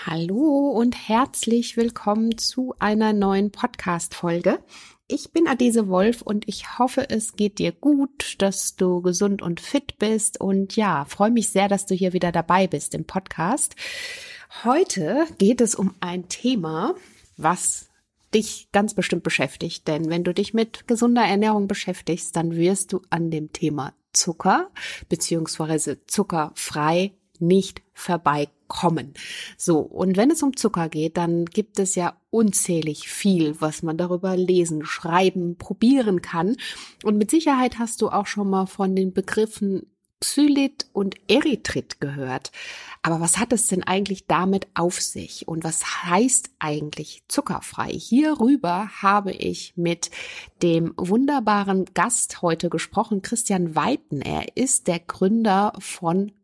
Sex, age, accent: female, 30-49, German